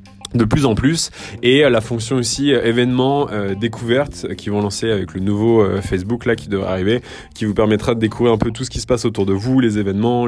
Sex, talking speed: male, 245 wpm